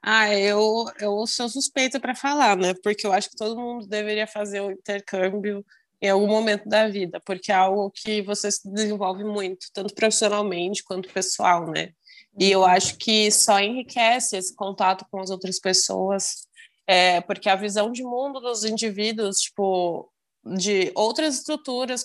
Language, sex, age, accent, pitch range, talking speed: Portuguese, female, 20-39, Brazilian, 190-230 Hz, 165 wpm